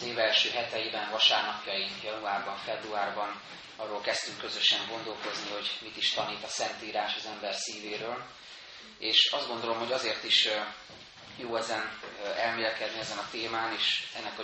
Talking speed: 140 wpm